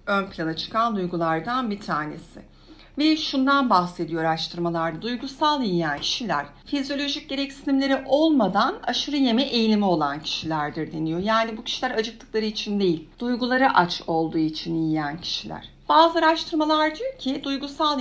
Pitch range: 165-270 Hz